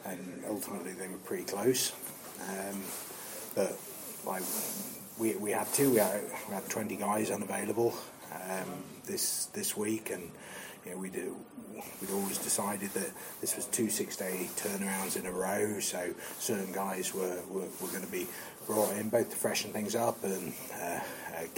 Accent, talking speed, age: British, 160 wpm, 30-49